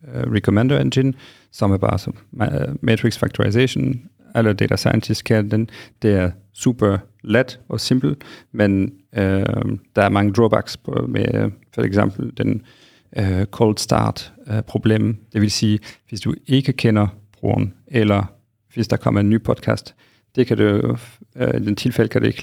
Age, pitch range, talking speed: 40-59, 105-120 Hz, 160 wpm